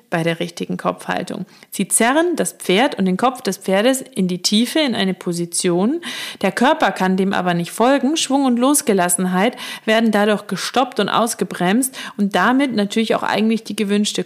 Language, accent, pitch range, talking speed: German, German, 185-250 Hz, 175 wpm